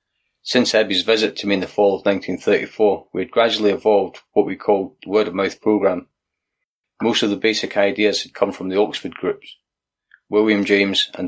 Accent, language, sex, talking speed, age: British, English, male, 180 wpm, 30-49